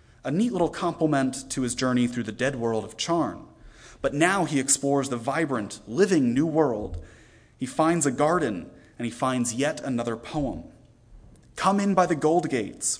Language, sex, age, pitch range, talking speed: English, male, 30-49, 115-150 Hz, 175 wpm